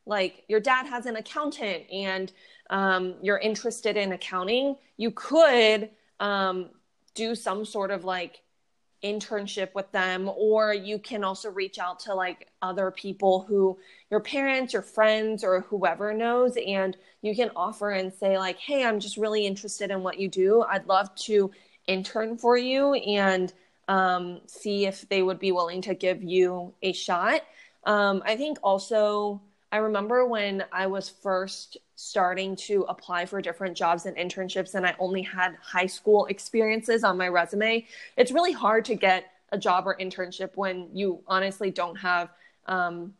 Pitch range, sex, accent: 185-220 Hz, female, American